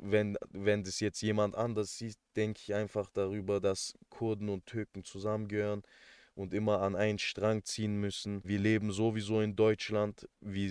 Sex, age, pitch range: male, 20-39, 95-105 Hz